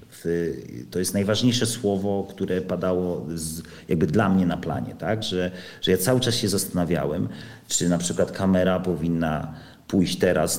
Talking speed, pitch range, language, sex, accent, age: 145 wpm, 95-125 Hz, Polish, male, native, 40-59